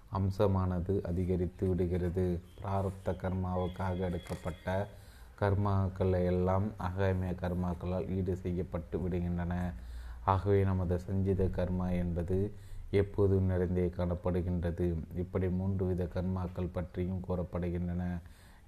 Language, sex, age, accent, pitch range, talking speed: Tamil, male, 30-49, native, 90-95 Hz, 85 wpm